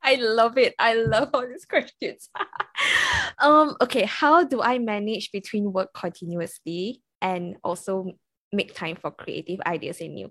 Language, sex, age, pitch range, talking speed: English, female, 20-39, 180-230 Hz, 150 wpm